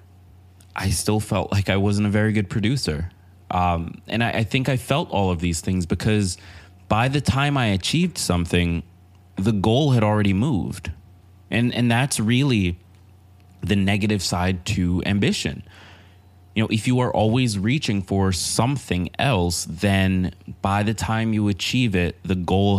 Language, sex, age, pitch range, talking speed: English, male, 20-39, 90-110 Hz, 160 wpm